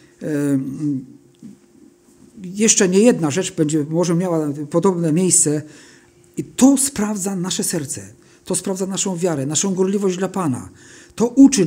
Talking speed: 130 wpm